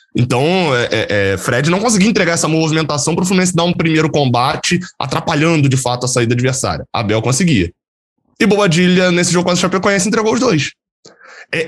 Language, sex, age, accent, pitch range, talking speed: Portuguese, male, 20-39, Brazilian, 120-170 Hz, 180 wpm